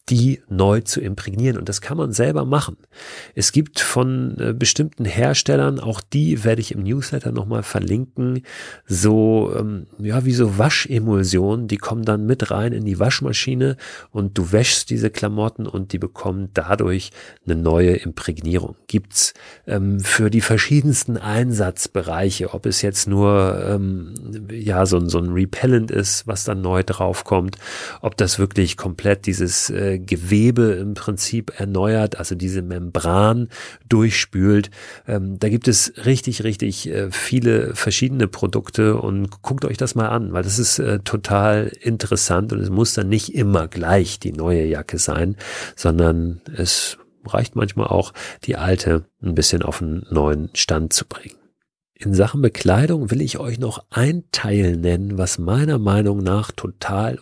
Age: 40-59